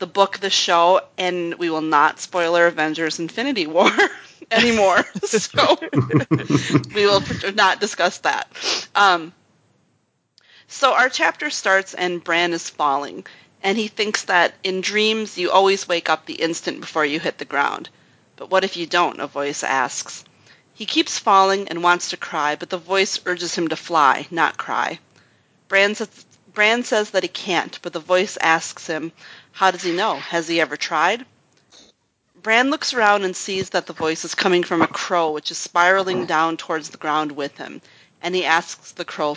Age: 30-49